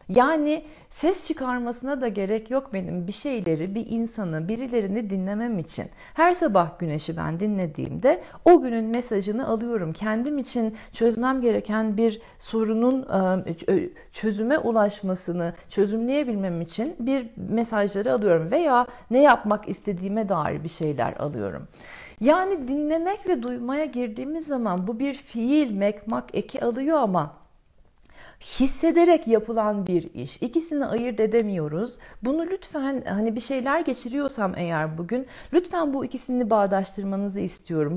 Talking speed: 120 wpm